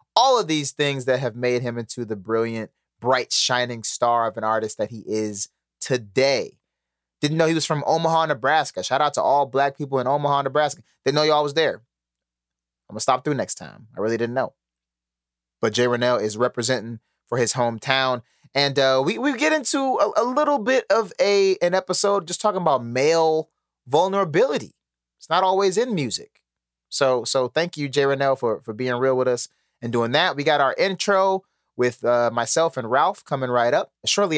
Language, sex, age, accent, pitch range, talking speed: English, male, 20-39, American, 110-180 Hz, 195 wpm